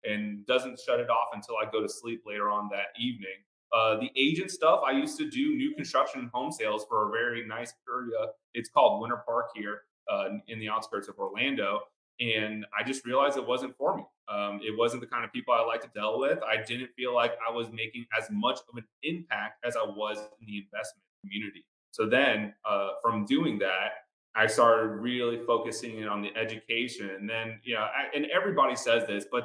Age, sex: 30-49, male